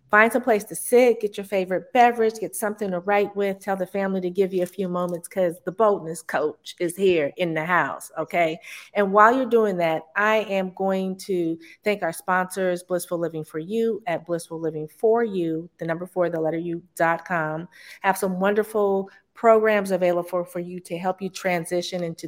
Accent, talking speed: American, 195 wpm